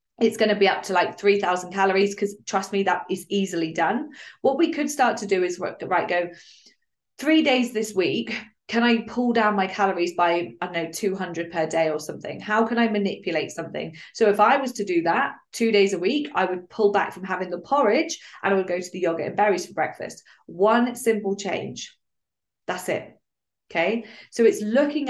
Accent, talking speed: British, 215 wpm